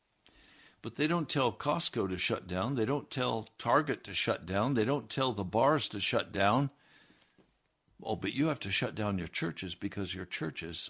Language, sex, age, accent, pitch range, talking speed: English, male, 60-79, American, 100-140 Hz, 195 wpm